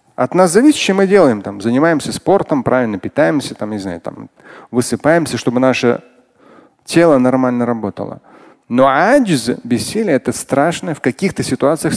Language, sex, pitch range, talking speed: Russian, male, 115-180 Hz, 145 wpm